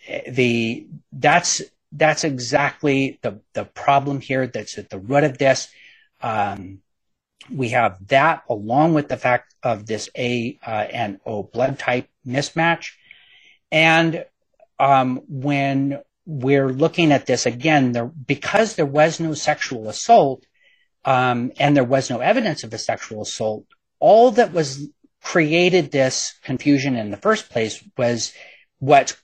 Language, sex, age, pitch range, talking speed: English, male, 40-59, 115-150 Hz, 140 wpm